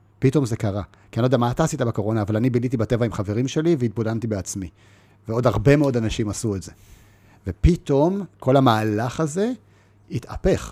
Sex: male